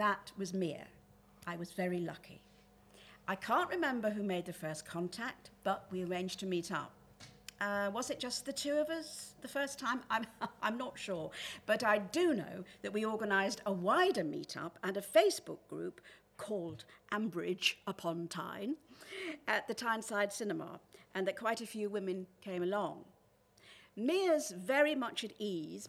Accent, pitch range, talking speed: British, 190-270 Hz, 165 wpm